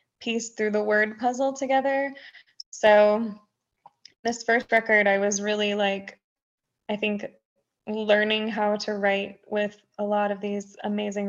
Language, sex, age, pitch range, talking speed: English, female, 20-39, 200-225 Hz, 140 wpm